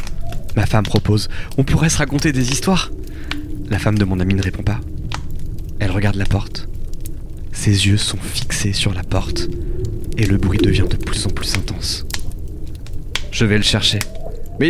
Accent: French